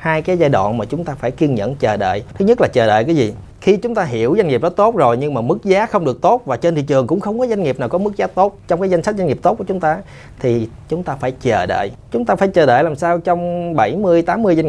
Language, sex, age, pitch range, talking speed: Vietnamese, male, 30-49, 145-200 Hz, 305 wpm